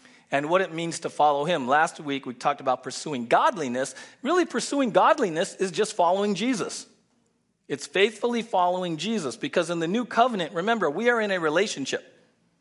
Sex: male